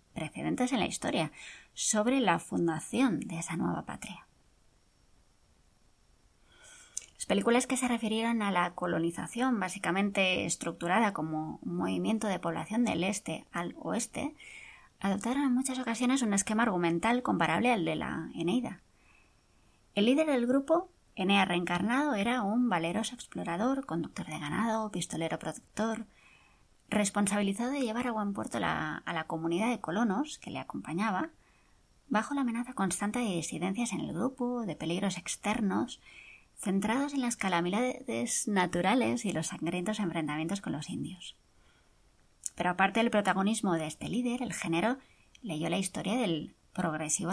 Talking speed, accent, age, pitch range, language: 140 wpm, Spanish, 20-39, 175-245 Hz, Spanish